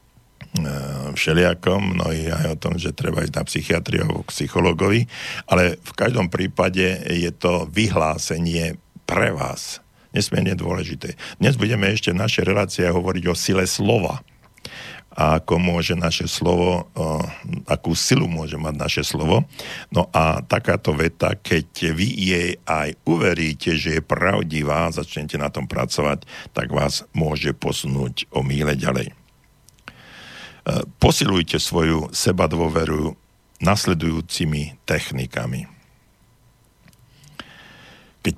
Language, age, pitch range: Slovak, 60-79, 80-95 Hz